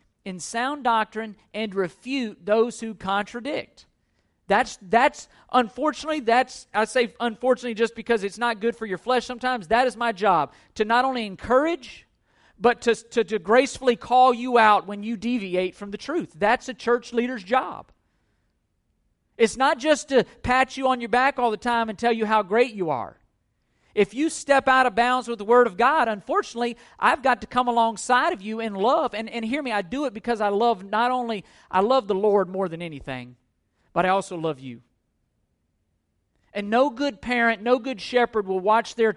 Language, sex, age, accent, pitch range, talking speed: English, male, 50-69, American, 195-250 Hz, 190 wpm